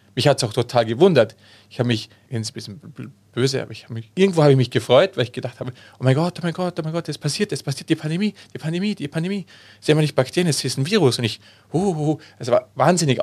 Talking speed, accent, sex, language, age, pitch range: 290 wpm, German, male, German, 40-59, 115-150 Hz